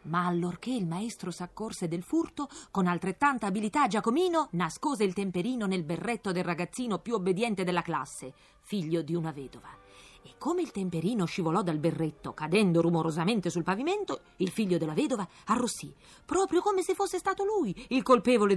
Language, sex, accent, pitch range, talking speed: Italian, female, native, 170-245 Hz, 160 wpm